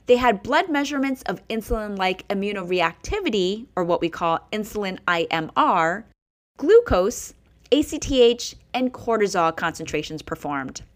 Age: 20-39